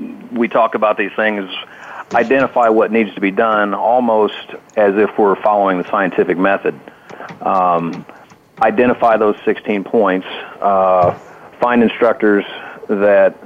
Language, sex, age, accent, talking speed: English, male, 40-59, American, 125 wpm